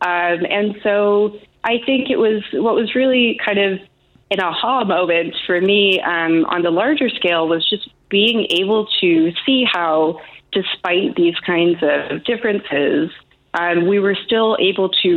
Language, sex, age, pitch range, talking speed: English, female, 20-39, 170-220 Hz, 160 wpm